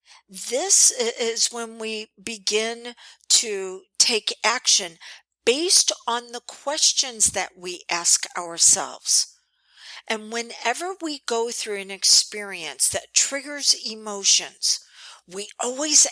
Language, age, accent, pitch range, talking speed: English, 50-69, American, 200-290 Hz, 105 wpm